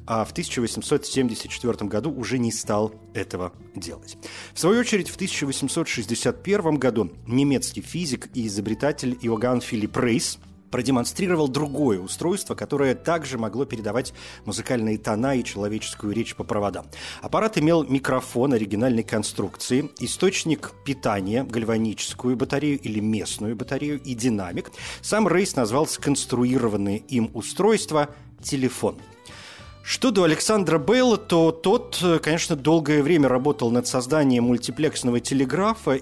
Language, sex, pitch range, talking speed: Russian, male, 110-150 Hz, 120 wpm